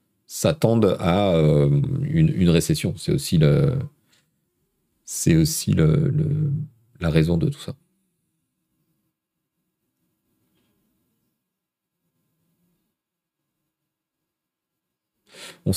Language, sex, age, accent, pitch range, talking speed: French, male, 40-59, French, 115-165 Hz, 55 wpm